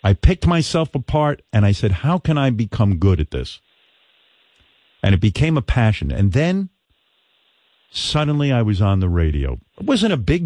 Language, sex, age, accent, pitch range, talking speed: English, male, 50-69, American, 95-150 Hz, 180 wpm